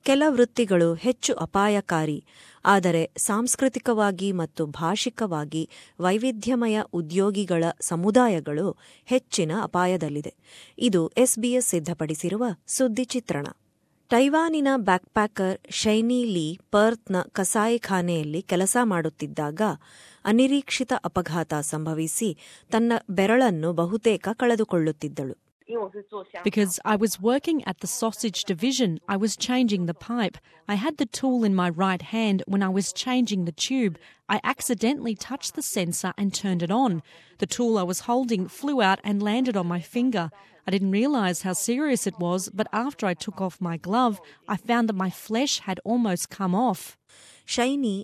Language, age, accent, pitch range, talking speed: Kannada, 30-49, native, 180-235 Hz, 130 wpm